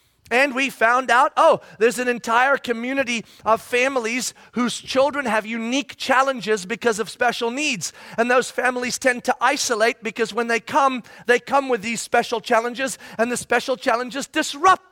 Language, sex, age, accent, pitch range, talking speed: English, male, 40-59, American, 205-245 Hz, 165 wpm